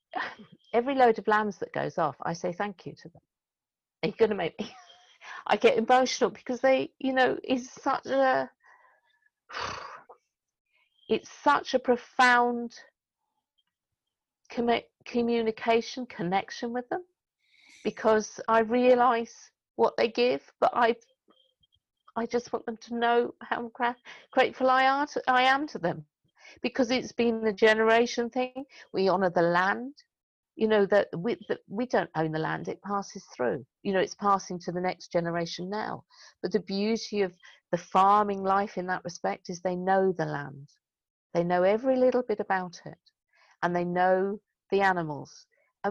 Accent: British